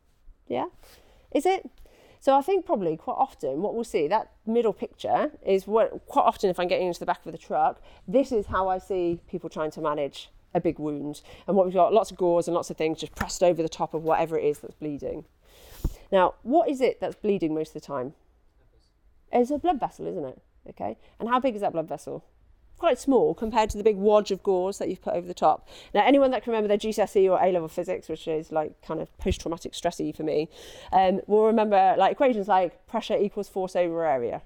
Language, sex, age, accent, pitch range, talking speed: English, female, 40-59, British, 170-250 Hz, 230 wpm